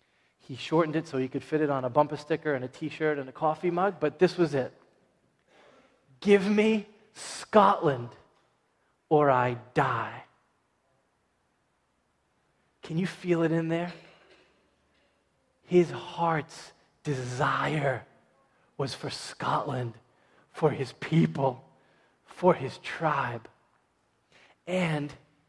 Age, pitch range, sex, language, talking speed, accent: 20-39, 130-160 Hz, male, English, 115 wpm, American